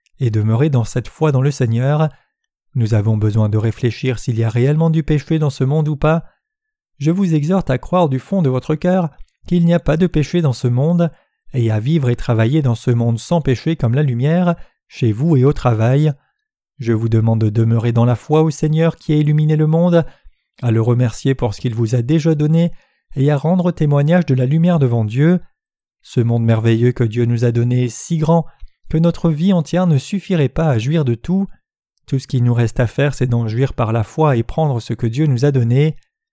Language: French